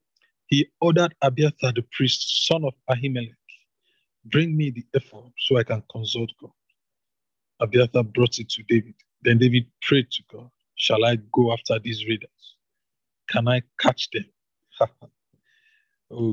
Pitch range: 115-140 Hz